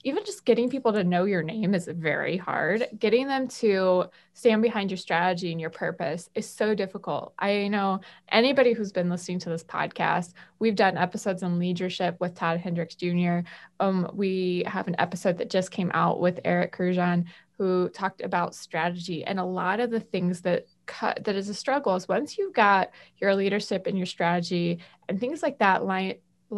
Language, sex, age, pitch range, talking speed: English, female, 20-39, 180-230 Hz, 190 wpm